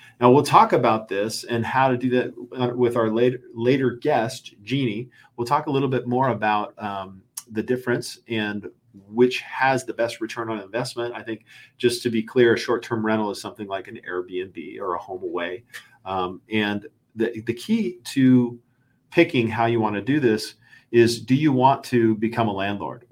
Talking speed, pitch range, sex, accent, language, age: 190 wpm, 110-125 Hz, male, American, English, 40-59